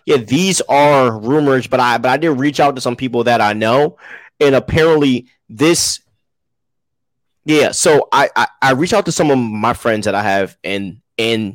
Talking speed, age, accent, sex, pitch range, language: 190 wpm, 20-39, American, male, 110-130 Hz, English